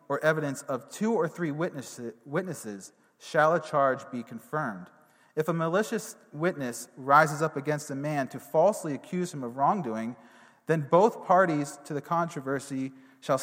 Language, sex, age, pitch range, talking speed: English, male, 30-49, 140-180 Hz, 150 wpm